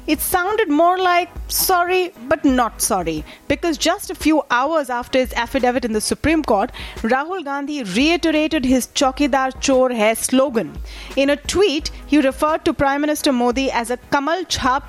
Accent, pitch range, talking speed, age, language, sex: Indian, 230-300 Hz, 165 wpm, 30-49, English, female